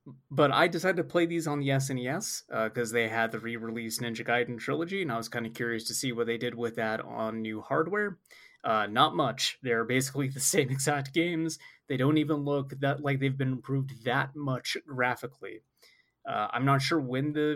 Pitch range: 125-170 Hz